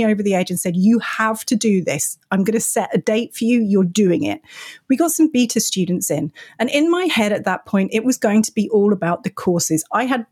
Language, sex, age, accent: English, female, 30-49, British